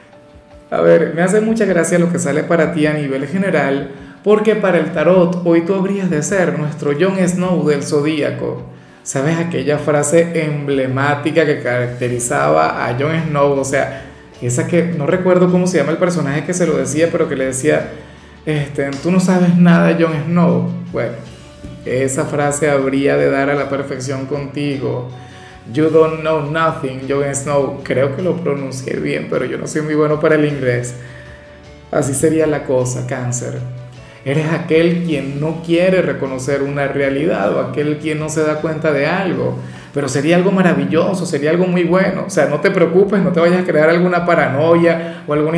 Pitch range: 140-170 Hz